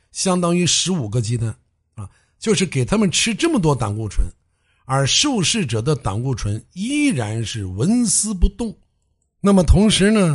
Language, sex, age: Chinese, male, 60-79